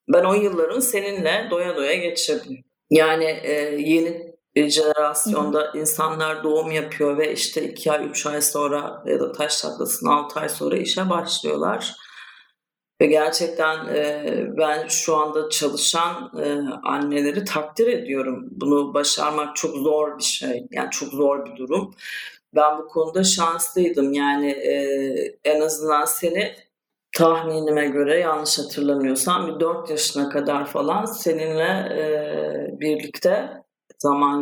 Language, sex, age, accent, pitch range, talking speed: Turkish, female, 40-59, native, 145-170 Hz, 125 wpm